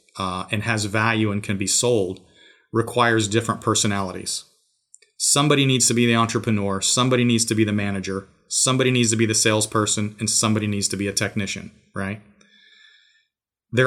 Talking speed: 165 wpm